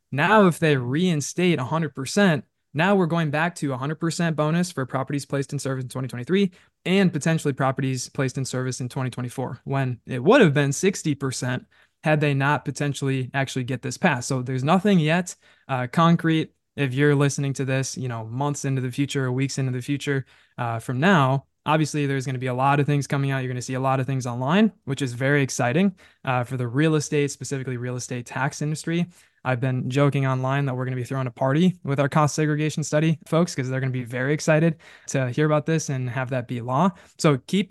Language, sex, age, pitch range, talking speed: English, male, 20-39, 130-165 Hz, 215 wpm